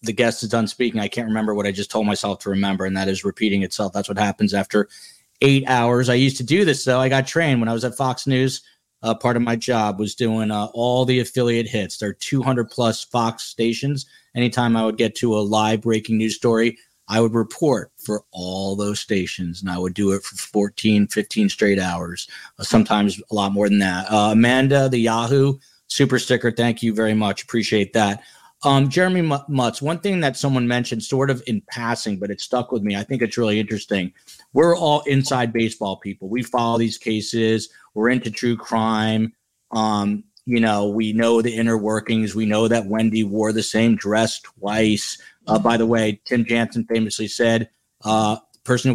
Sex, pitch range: male, 105-125 Hz